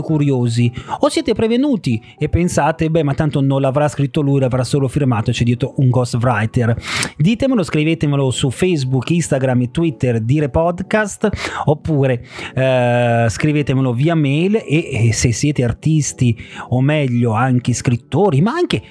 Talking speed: 145 wpm